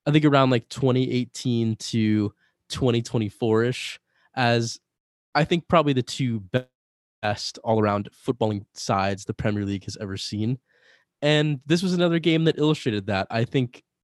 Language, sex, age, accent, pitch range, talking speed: English, male, 20-39, American, 105-125 Hz, 140 wpm